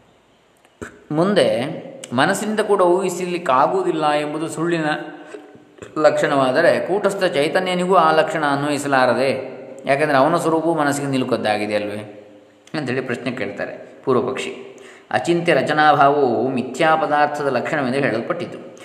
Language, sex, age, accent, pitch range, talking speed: Kannada, male, 20-39, native, 125-160 Hz, 90 wpm